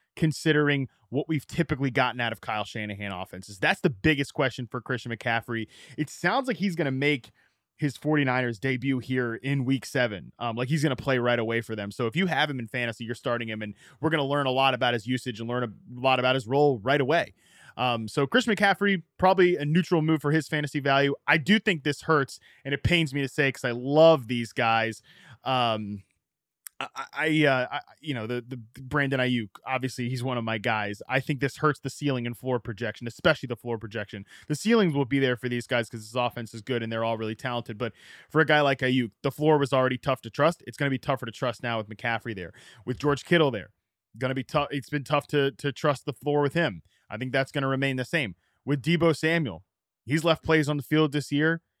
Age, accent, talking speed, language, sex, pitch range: 20-39, American, 240 wpm, English, male, 120-150 Hz